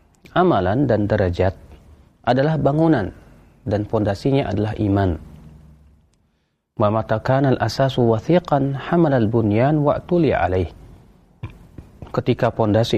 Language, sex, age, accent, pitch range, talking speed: Indonesian, male, 40-59, native, 95-135 Hz, 70 wpm